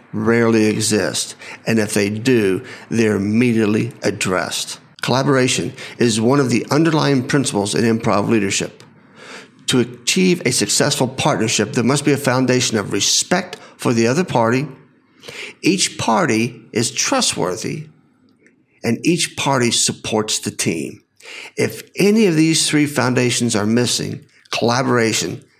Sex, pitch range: male, 110-135 Hz